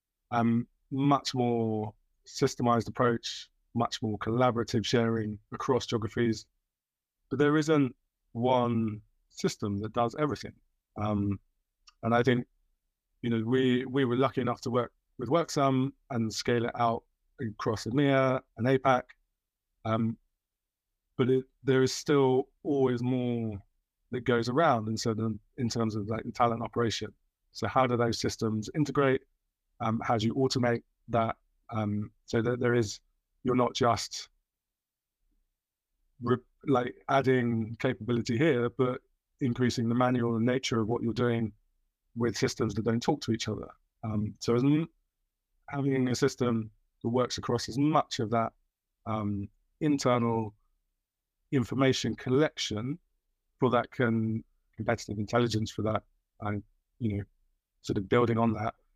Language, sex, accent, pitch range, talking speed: English, male, British, 110-125 Hz, 135 wpm